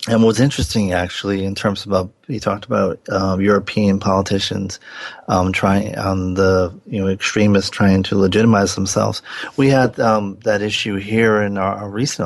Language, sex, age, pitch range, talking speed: English, male, 40-59, 95-105 Hz, 165 wpm